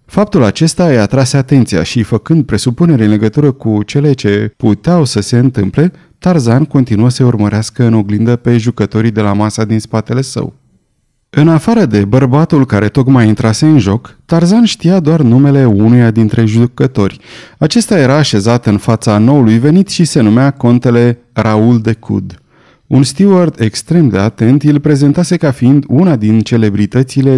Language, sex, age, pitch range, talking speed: Romanian, male, 30-49, 110-145 Hz, 160 wpm